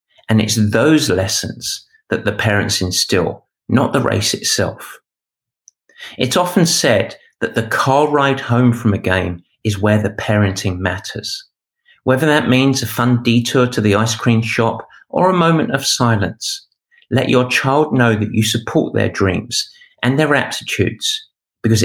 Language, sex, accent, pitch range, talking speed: English, male, British, 100-125 Hz, 155 wpm